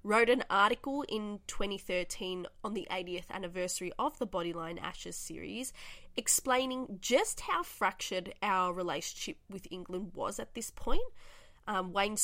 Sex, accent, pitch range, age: female, Australian, 180-230 Hz, 20-39